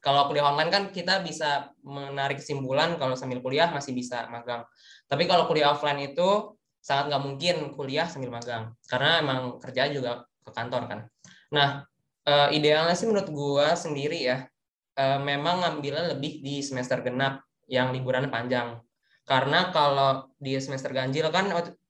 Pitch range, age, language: 130-165 Hz, 10-29, Indonesian